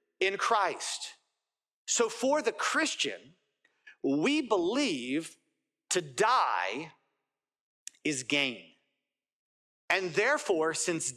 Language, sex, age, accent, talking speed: English, male, 40-59, American, 80 wpm